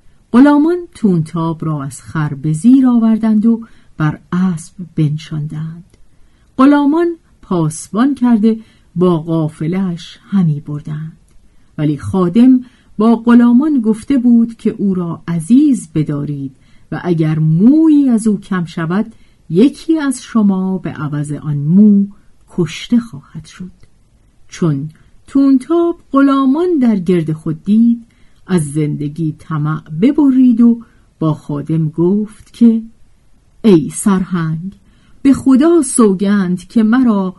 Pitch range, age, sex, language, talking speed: 160-245 Hz, 50-69, female, Persian, 110 wpm